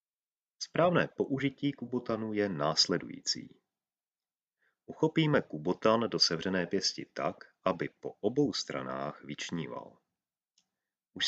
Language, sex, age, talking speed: Czech, male, 30-49, 90 wpm